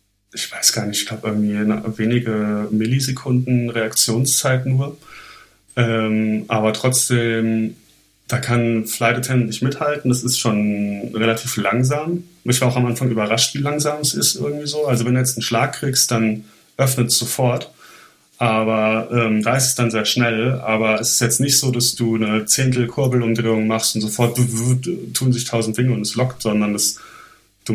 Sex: male